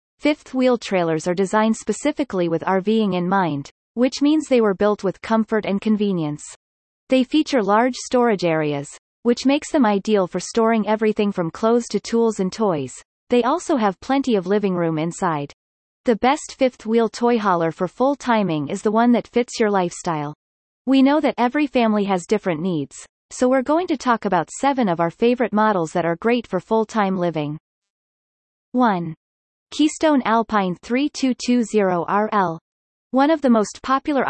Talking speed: 170 wpm